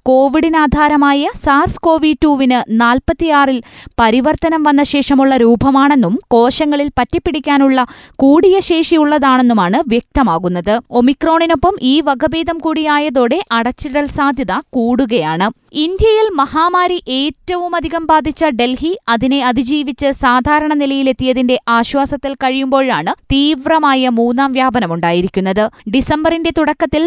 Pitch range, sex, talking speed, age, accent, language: 245-305 Hz, female, 80 wpm, 20-39, native, Malayalam